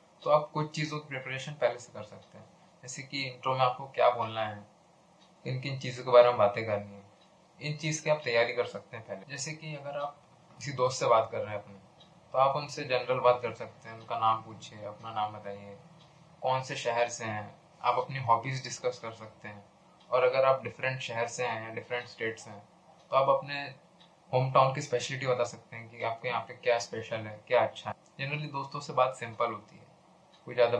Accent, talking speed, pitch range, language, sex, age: native, 220 wpm, 115-140 Hz, Hindi, male, 20-39